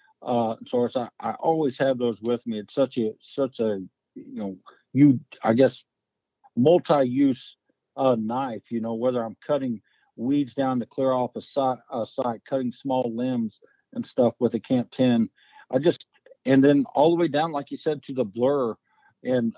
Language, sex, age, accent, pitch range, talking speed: English, male, 50-69, American, 115-135 Hz, 180 wpm